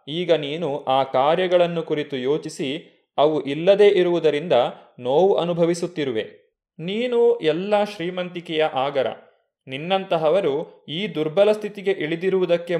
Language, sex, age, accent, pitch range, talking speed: Kannada, male, 20-39, native, 150-200 Hz, 95 wpm